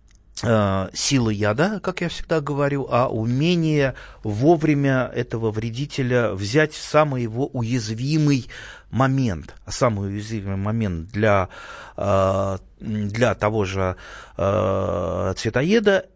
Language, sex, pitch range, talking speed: Russian, male, 100-140 Hz, 95 wpm